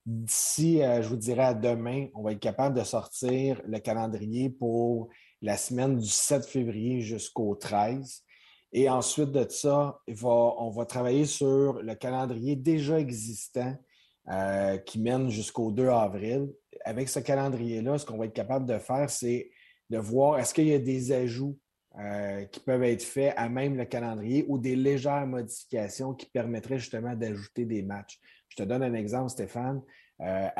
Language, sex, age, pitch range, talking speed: French, male, 30-49, 110-135 Hz, 165 wpm